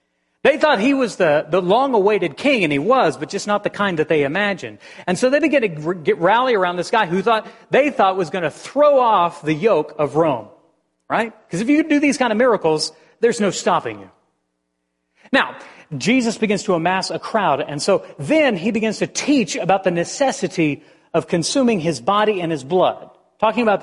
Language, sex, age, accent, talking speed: English, male, 40-59, American, 205 wpm